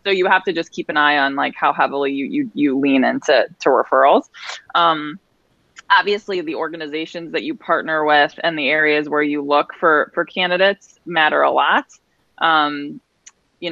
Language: English